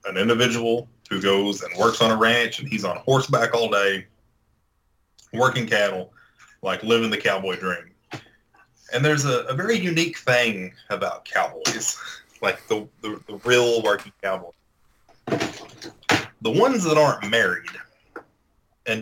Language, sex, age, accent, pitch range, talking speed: English, male, 30-49, American, 95-135 Hz, 140 wpm